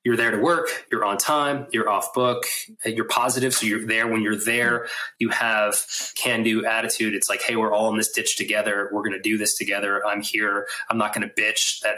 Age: 20-39